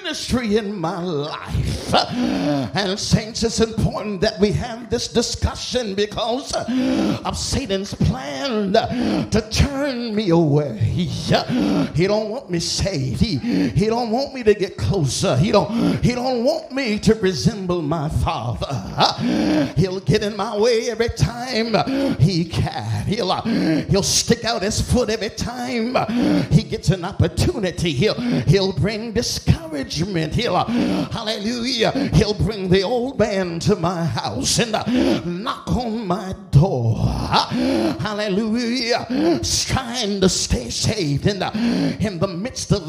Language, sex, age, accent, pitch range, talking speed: English, male, 50-69, American, 180-235 Hz, 135 wpm